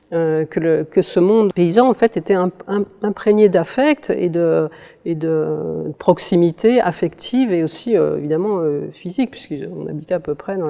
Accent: French